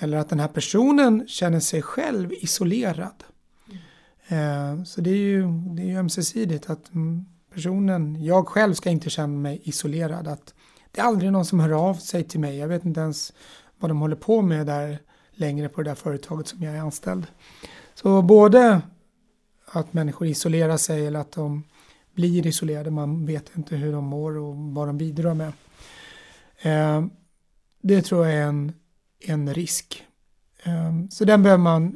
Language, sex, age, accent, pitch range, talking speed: Swedish, male, 30-49, native, 150-185 Hz, 160 wpm